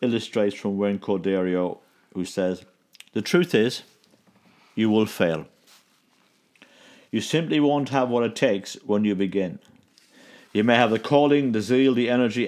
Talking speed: 150 wpm